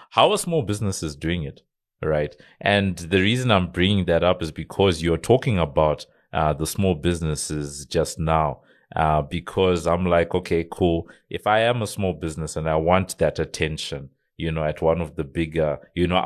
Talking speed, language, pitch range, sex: 190 wpm, English, 80-100 Hz, male